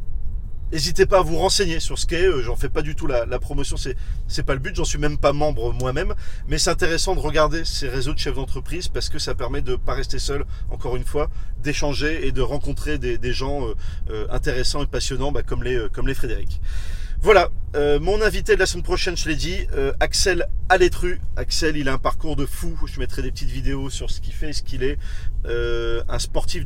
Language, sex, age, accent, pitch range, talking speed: French, male, 30-49, French, 110-150 Hz, 235 wpm